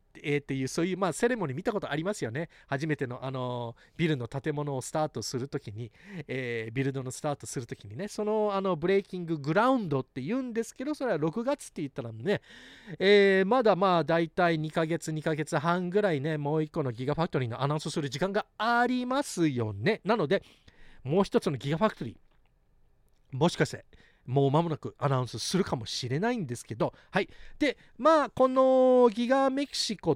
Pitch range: 150-235 Hz